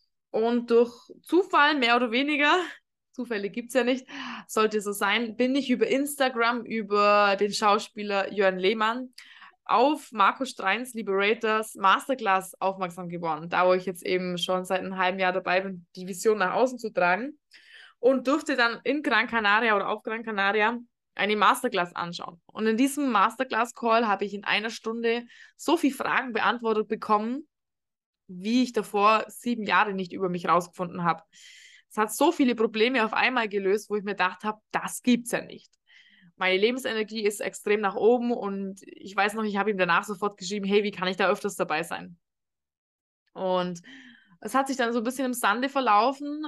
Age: 20-39